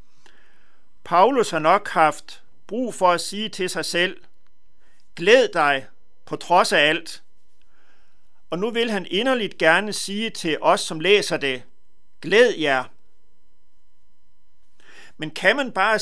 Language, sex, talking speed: Danish, male, 130 wpm